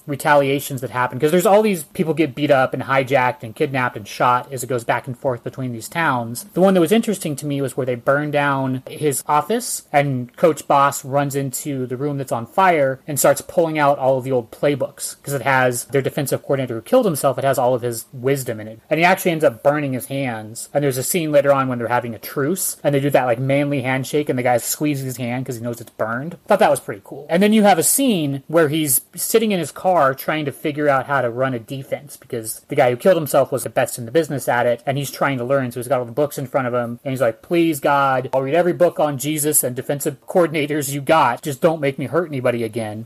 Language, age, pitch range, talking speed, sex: English, 30-49, 125-150 Hz, 270 wpm, male